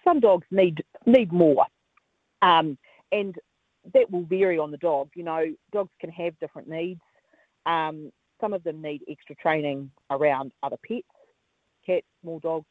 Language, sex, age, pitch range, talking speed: English, female, 40-59, 145-180 Hz, 155 wpm